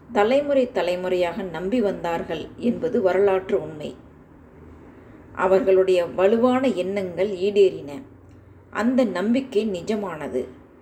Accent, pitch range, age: native, 185-240 Hz, 30-49